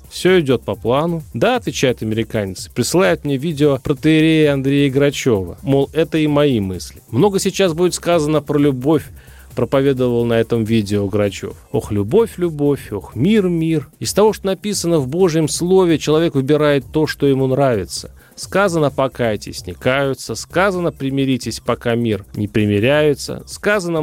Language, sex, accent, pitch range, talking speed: Russian, male, native, 115-150 Hz, 150 wpm